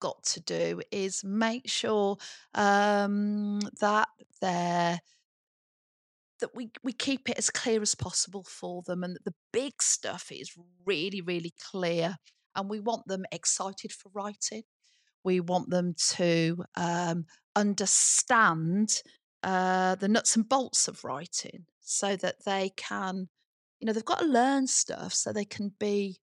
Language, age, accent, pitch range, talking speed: English, 40-59, British, 185-220 Hz, 145 wpm